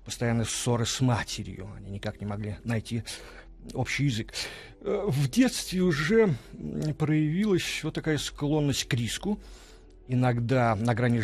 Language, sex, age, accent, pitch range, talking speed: Russian, male, 40-59, native, 105-140 Hz, 125 wpm